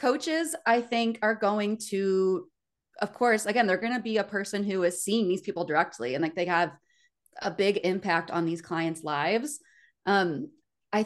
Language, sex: English, female